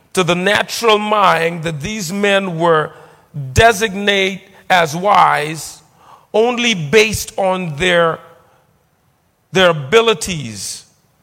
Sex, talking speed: male, 90 wpm